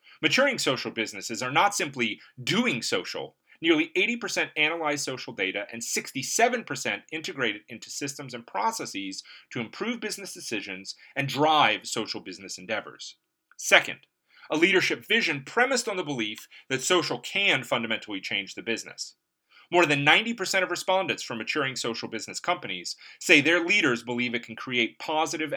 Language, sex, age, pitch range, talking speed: English, male, 30-49, 115-170 Hz, 150 wpm